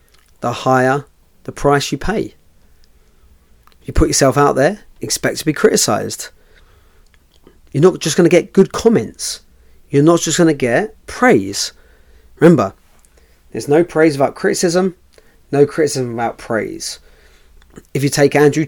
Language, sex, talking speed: English, male, 140 wpm